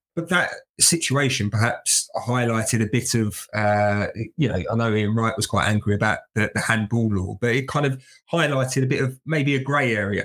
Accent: British